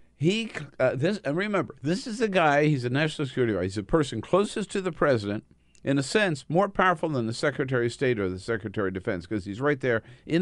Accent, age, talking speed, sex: American, 50-69, 235 wpm, male